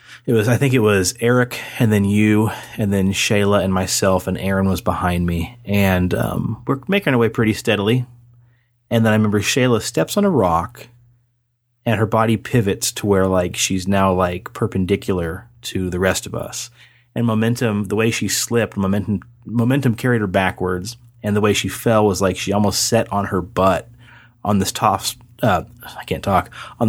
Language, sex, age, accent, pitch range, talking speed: English, male, 30-49, American, 95-120 Hz, 190 wpm